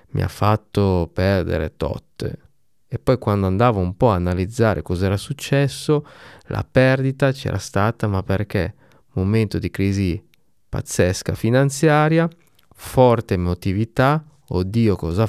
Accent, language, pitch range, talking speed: native, Italian, 95-120 Hz, 120 wpm